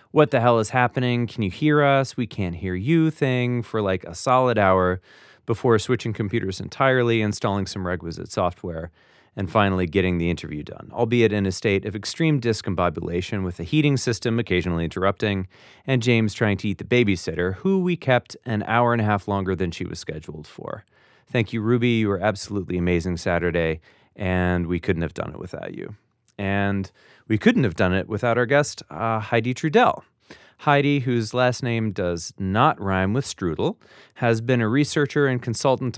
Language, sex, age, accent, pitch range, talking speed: English, male, 30-49, American, 95-125 Hz, 185 wpm